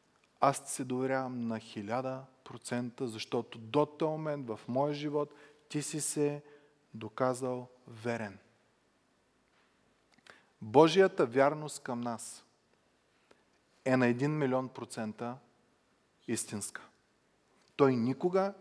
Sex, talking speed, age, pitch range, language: male, 95 wpm, 30-49, 120-160 Hz, Bulgarian